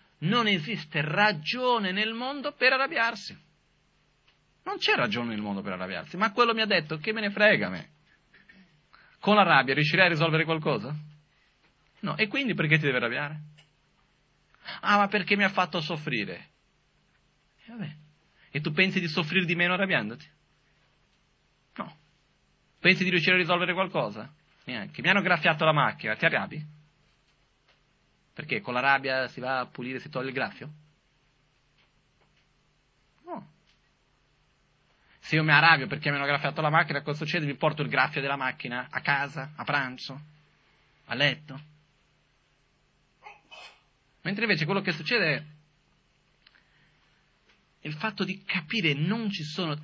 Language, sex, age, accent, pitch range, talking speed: Italian, male, 30-49, native, 145-195 Hz, 145 wpm